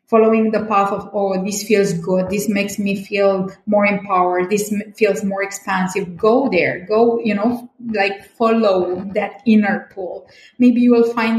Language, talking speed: English, 170 wpm